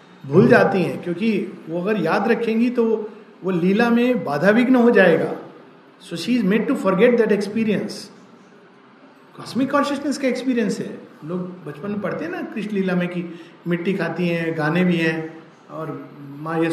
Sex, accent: male, native